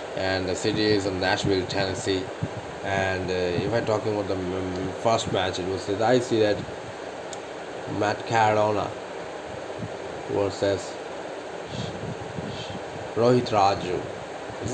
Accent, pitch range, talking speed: Indian, 95-115 Hz, 115 wpm